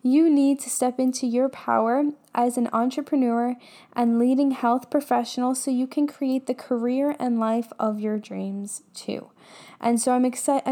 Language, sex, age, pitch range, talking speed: English, female, 10-29, 240-285 Hz, 170 wpm